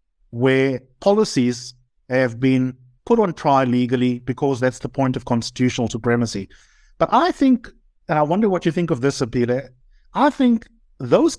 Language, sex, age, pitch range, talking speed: English, male, 50-69, 125-175 Hz, 160 wpm